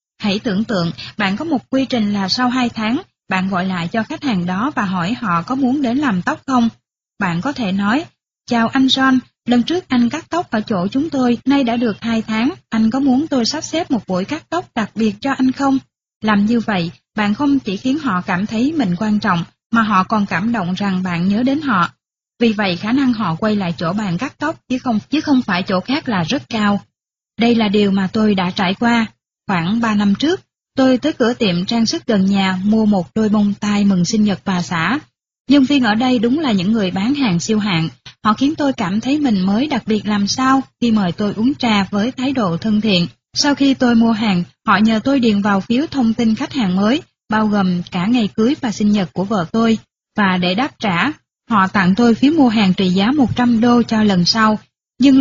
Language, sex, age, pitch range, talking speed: Vietnamese, female, 20-39, 200-255 Hz, 235 wpm